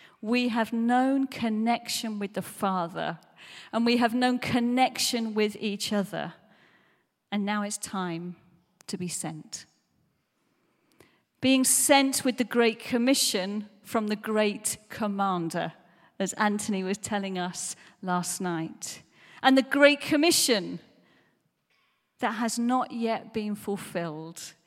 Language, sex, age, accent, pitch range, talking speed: English, female, 40-59, British, 180-225 Hz, 120 wpm